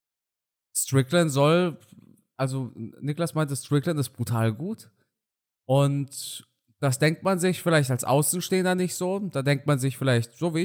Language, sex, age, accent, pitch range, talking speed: German, male, 20-39, German, 120-160 Hz, 145 wpm